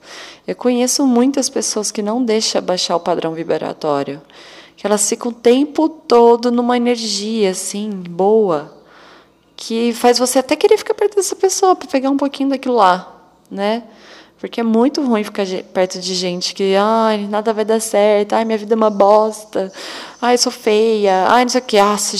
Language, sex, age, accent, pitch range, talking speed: Portuguese, female, 20-39, Brazilian, 180-235 Hz, 180 wpm